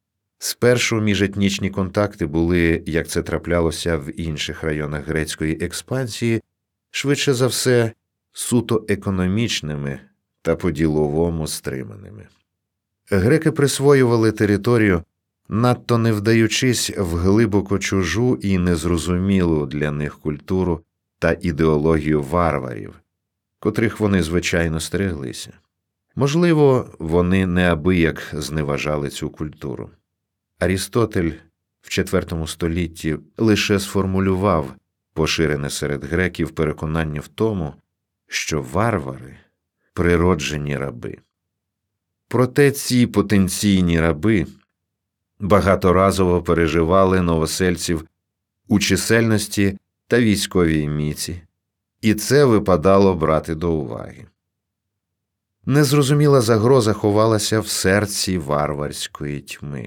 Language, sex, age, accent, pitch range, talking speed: Ukrainian, male, 40-59, native, 80-105 Hz, 90 wpm